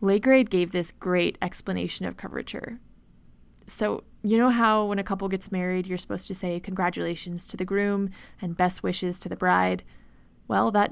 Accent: American